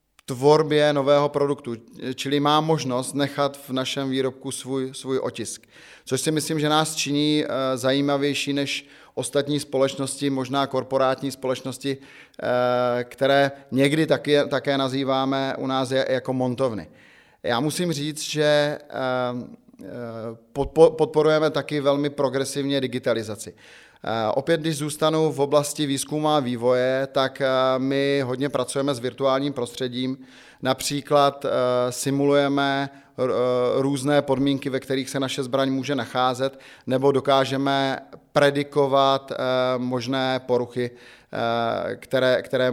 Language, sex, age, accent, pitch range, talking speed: Czech, male, 30-49, native, 130-145 Hz, 110 wpm